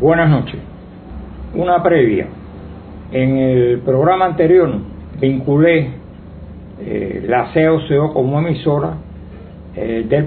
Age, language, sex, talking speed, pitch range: 60-79, Spanish, male, 95 wpm, 105-155 Hz